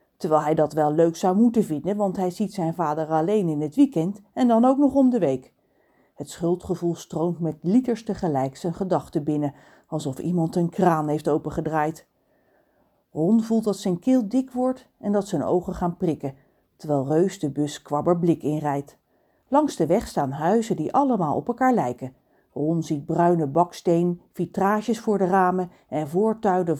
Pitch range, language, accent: 155-215 Hz, Dutch, Dutch